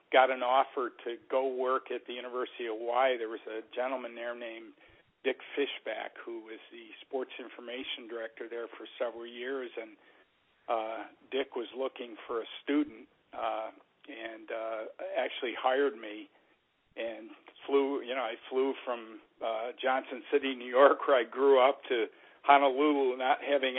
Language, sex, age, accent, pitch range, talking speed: English, male, 50-69, American, 115-140 Hz, 160 wpm